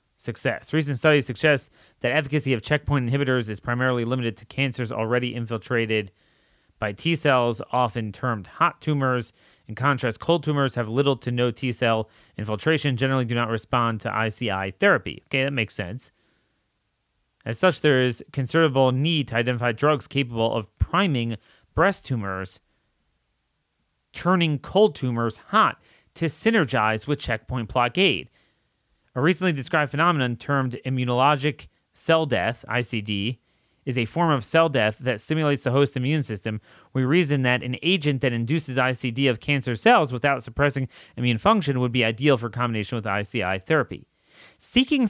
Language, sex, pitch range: English, male, 115-150 Hz